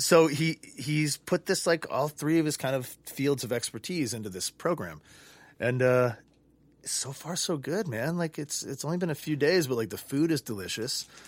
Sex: male